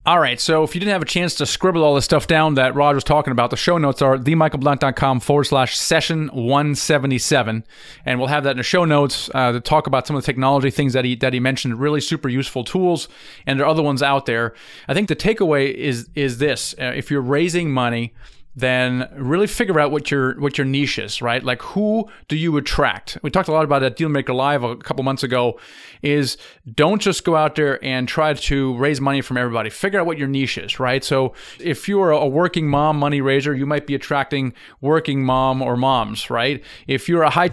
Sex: male